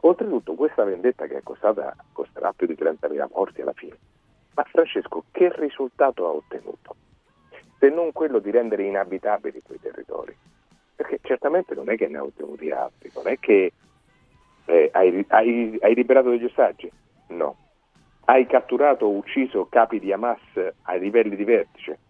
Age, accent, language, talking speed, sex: 40-59, native, Italian, 155 wpm, male